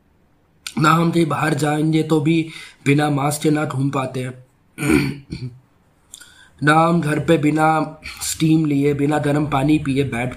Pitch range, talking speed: 130-170 Hz, 145 wpm